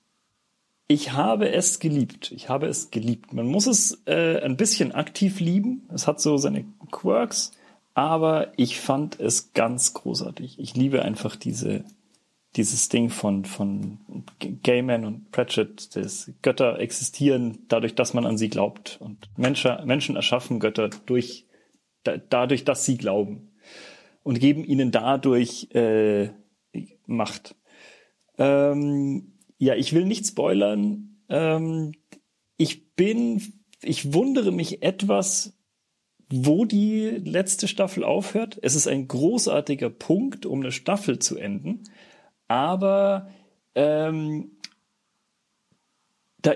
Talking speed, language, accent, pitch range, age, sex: 120 wpm, German, German, 120-185 Hz, 40-59, male